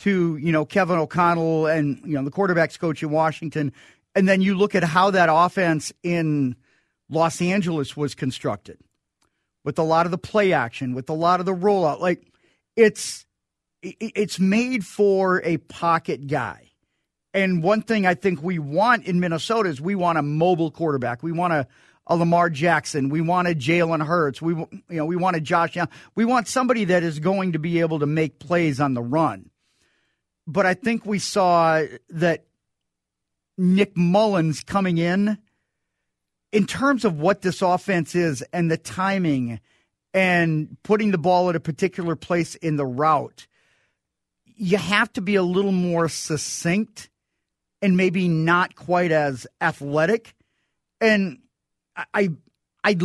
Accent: American